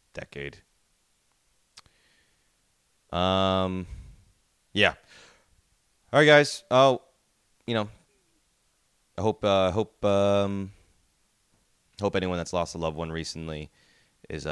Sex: male